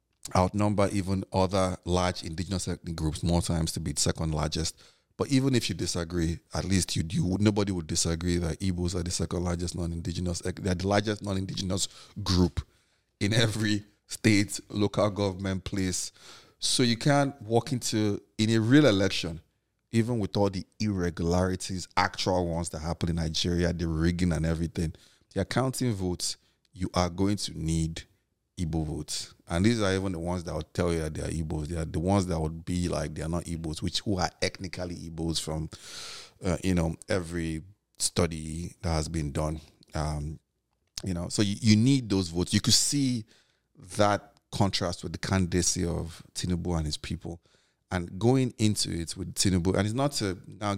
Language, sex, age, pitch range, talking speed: English, male, 30-49, 85-100 Hz, 180 wpm